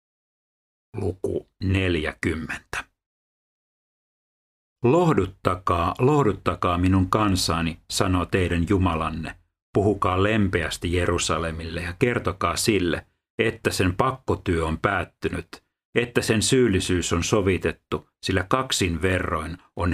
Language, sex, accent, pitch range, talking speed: Finnish, male, native, 85-100 Hz, 85 wpm